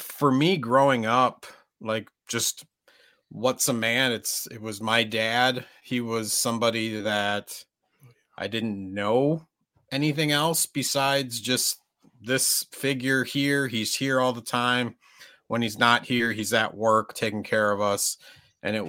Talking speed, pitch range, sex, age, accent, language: 145 wpm, 110-130 Hz, male, 30-49, American, English